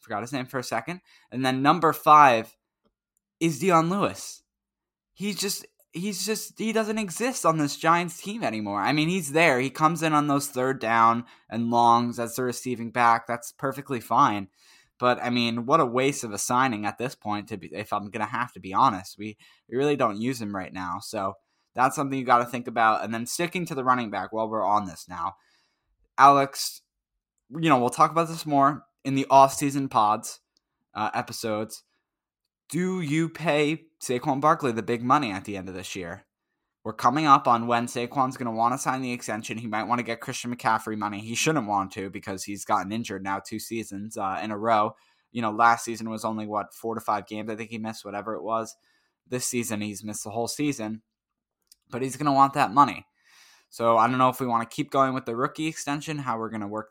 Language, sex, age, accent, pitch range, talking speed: English, male, 10-29, American, 110-145 Hz, 220 wpm